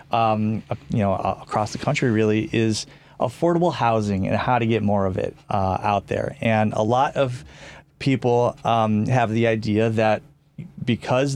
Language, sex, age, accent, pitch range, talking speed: English, male, 30-49, American, 110-135 Hz, 165 wpm